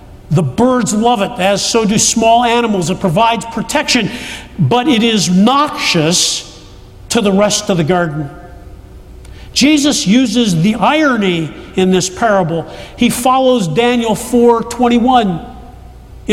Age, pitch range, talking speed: 50-69, 190-260 Hz, 120 wpm